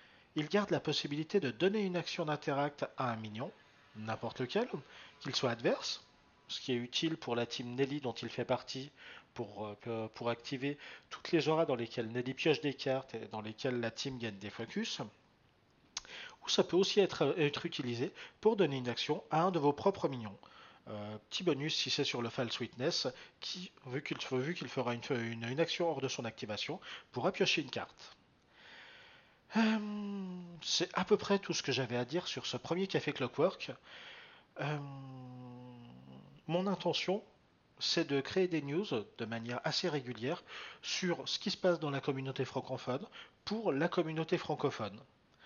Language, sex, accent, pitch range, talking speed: French, male, French, 125-170 Hz, 180 wpm